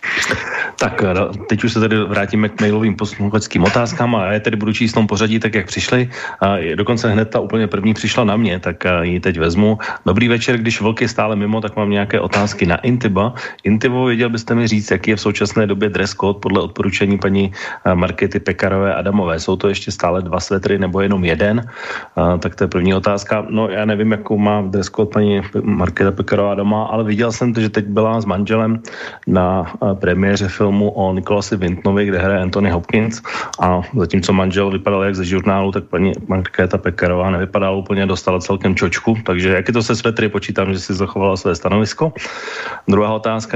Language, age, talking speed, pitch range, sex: Slovak, 30-49, 195 wpm, 95-110 Hz, male